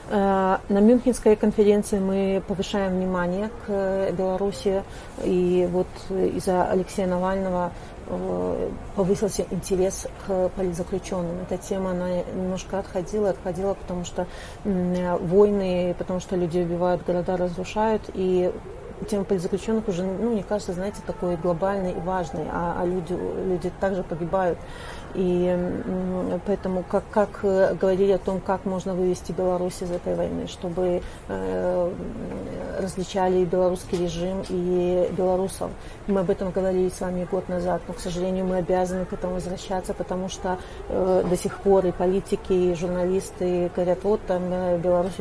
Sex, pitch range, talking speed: female, 180-195 Hz, 135 wpm